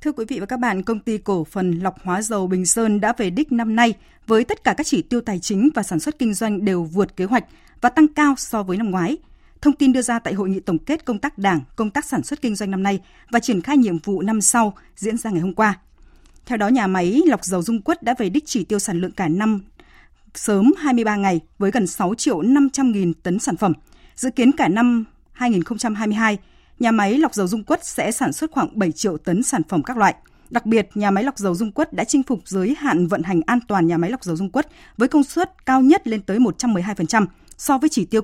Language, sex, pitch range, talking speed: Vietnamese, female, 190-260 Hz, 250 wpm